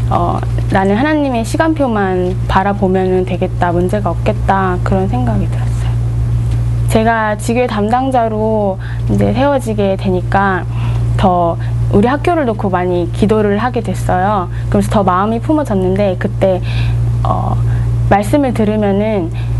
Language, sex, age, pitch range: Korean, female, 20-39, 100-120 Hz